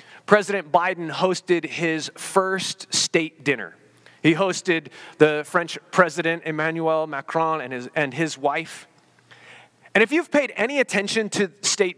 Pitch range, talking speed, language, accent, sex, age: 170-220 Hz, 135 wpm, English, American, male, 30-49